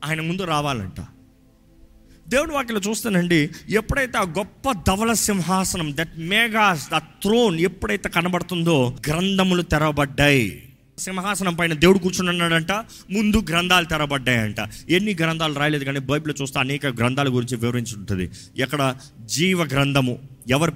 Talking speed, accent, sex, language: 115 wpm, native, male, Telugu